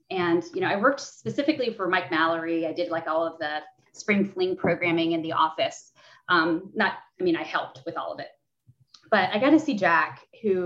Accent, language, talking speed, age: American, English, 215 wpm, 30-49